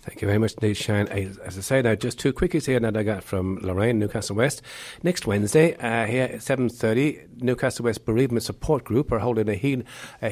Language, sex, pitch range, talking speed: English, male, 100-125 Hz, 210 wpm